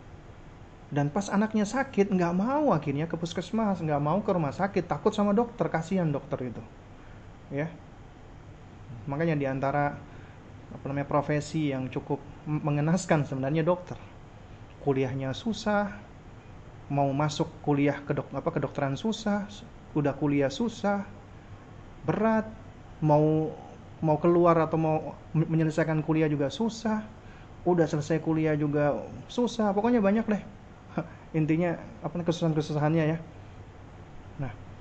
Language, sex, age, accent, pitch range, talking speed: Indonesian, male, 30-49, native, 120-165 Hz, 115 wpm